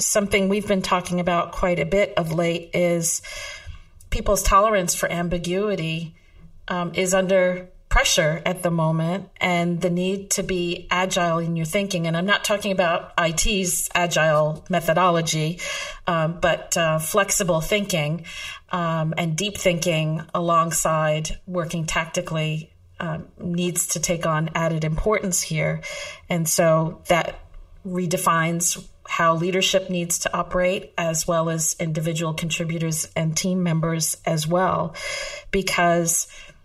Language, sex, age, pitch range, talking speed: English, female, 40-59, 165-185 Hz, 130 wpm